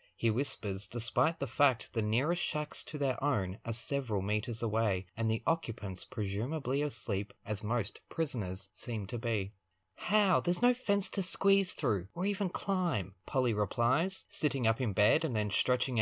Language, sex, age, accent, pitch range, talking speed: English, male, 20-39, Australian, 110-165 Hz, 170 wpm